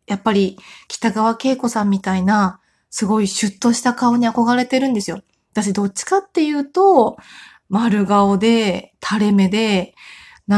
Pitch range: 200-275 Hz